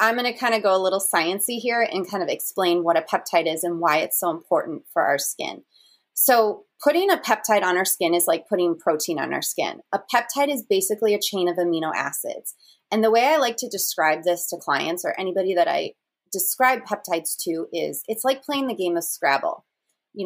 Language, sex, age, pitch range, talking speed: English, female, 30-49, 175-220 Hz, 220 wpm